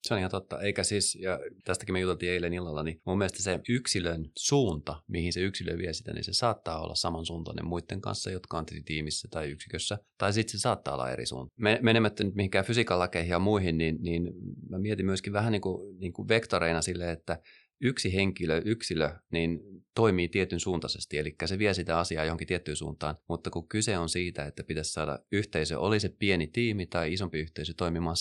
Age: 30-49